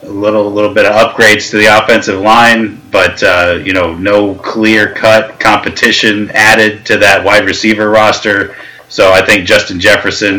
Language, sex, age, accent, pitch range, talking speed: English, male, 30-49, American, 105-125 Hz, 165 wpm